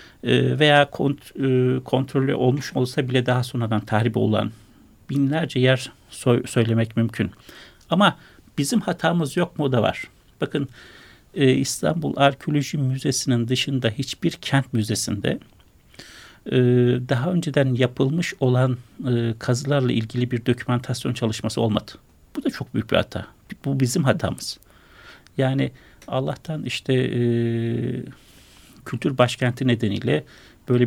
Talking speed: 110 wpm